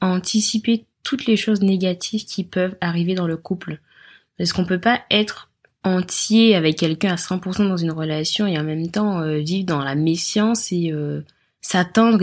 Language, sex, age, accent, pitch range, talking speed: French, female, 20-39, French, 160-205 Hz, 175 wpm